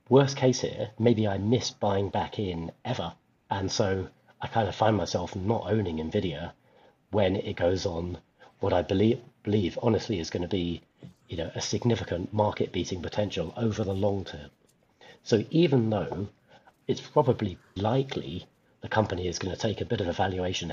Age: 40-59